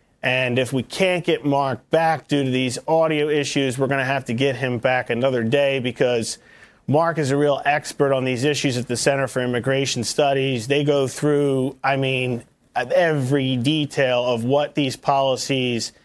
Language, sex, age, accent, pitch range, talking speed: English, male, 40-59, American, 135-160 Hz, 180 wpm